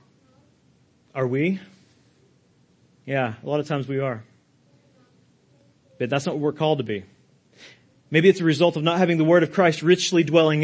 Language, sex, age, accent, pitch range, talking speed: English, male, 40-59, American, 135-180 Hz, 170 wpm